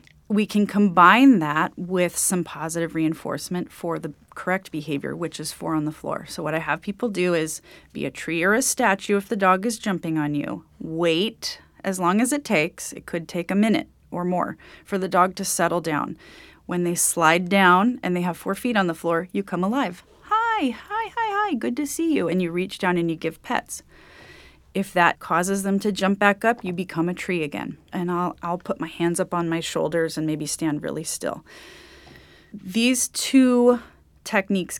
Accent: American